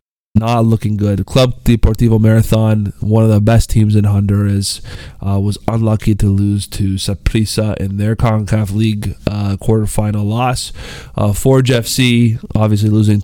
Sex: male